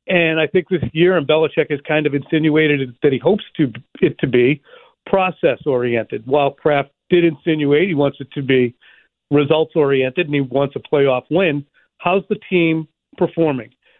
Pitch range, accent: 135-175 Hz, American